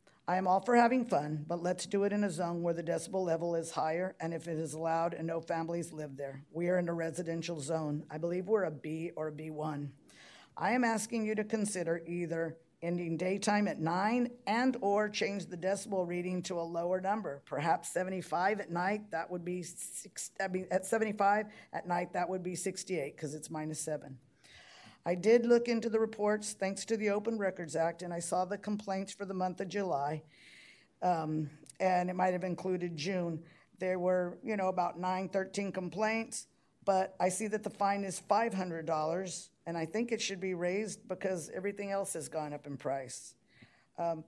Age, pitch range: 50-69, 165-200 Hz